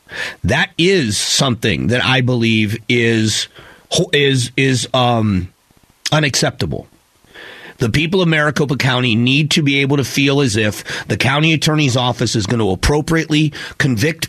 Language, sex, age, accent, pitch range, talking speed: English, male, 30-49, American, 120-145 Hz, 140 wpm